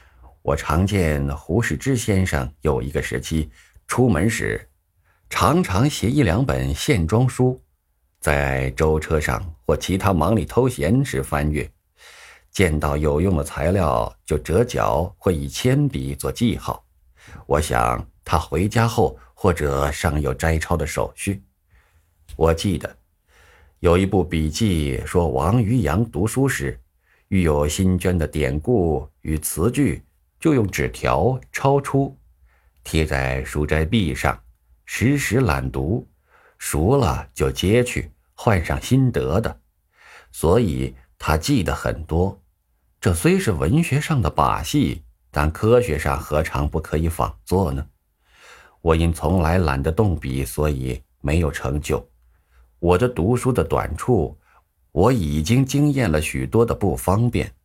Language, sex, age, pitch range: Chinese, male, 50-69, 70-100 Hz